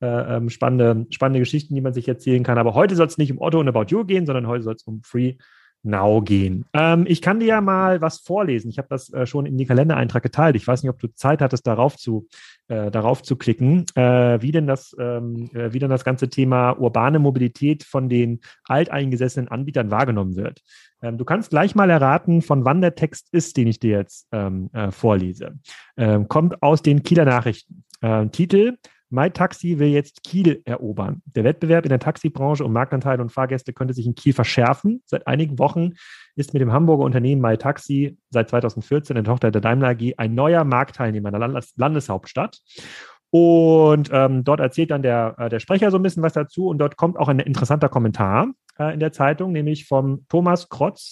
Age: 30-49